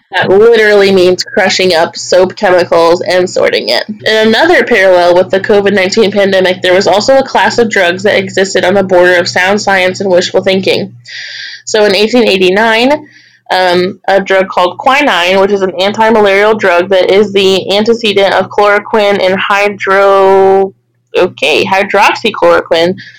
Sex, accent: female, American